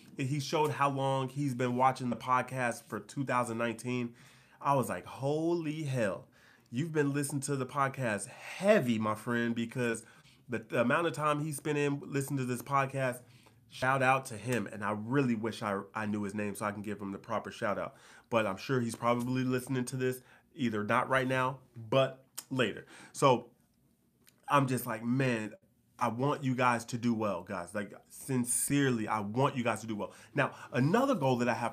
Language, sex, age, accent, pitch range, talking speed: English, male, 30-49, American, 120-145 Hz, 190 wpm